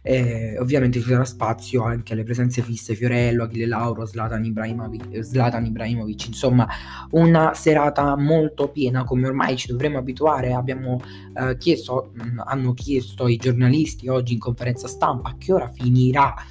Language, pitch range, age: Italian, 120-150 Hz, 20-39